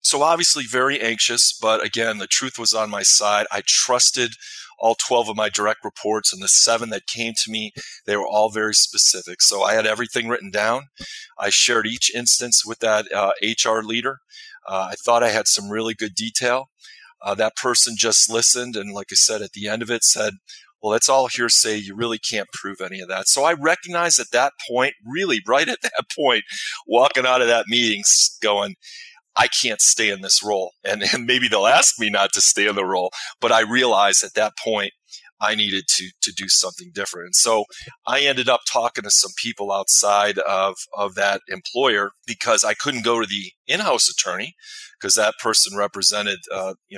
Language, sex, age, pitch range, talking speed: English, male, 30-49, 105-120 Hz, 200 wpm